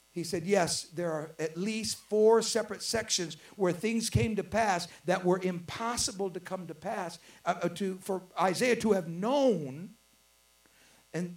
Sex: male